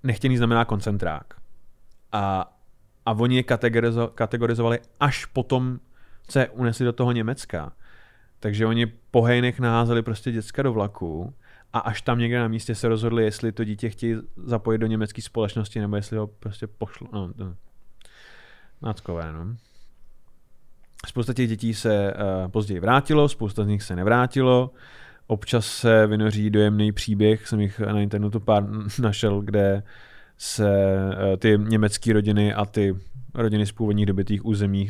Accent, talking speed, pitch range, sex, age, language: native, 145 wpm, 105-120 Hz, male, 30-49, Czech